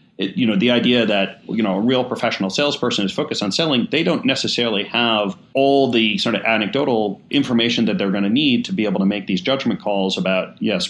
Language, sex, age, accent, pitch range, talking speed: English, male, 30-49, American, 100-125 Hz, 225 wpm